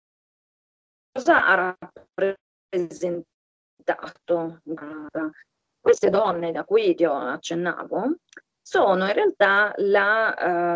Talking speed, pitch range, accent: 75 wpm, 165-190 Hz, native